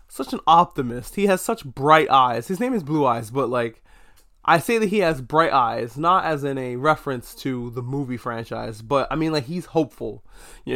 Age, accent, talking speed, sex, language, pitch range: 20-39, American, 210 wpm, male, English, 130-175 Hz